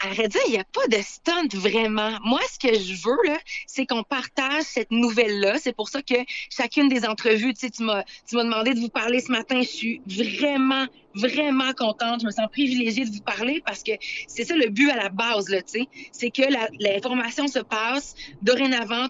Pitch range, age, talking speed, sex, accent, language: 220-270 Hz, 30-49, 205 wpm, female, Canadian, French